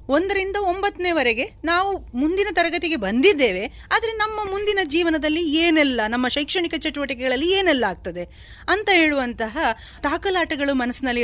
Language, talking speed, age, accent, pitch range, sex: Kannada, 110 wpm, 30-49, native, 235-315 Hz, female